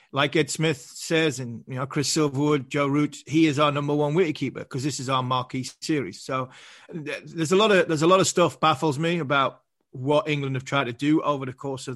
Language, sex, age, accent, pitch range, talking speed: English, male, 30-49, British, 135-155 Hz, 230 wpm